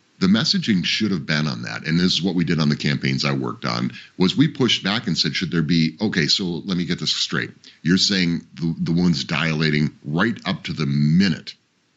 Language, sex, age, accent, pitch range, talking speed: English, male, 50-69, American, 75-110 Hz, 235 wpm